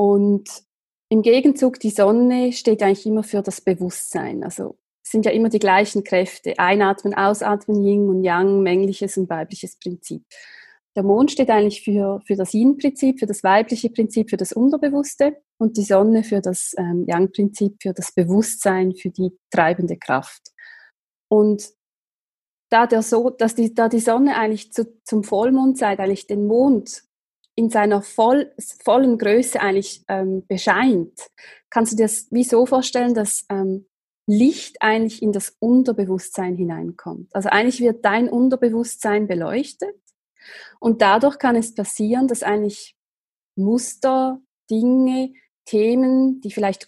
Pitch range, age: 200-250 Hz, 30-49